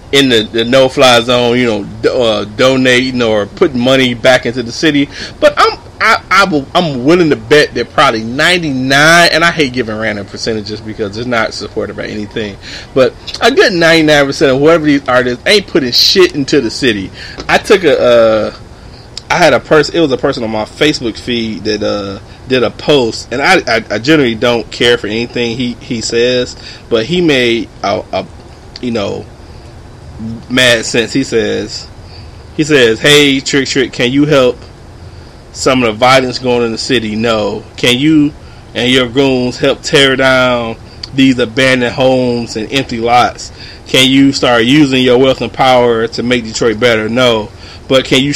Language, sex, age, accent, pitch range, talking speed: English, male, 30-49, American, 115-135 Hz, 180 wpm